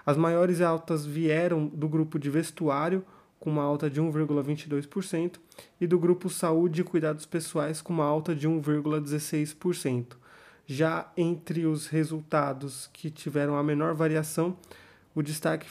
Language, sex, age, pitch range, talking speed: Portuguese, male, 20-39, 150-170 Hz, 140 wpm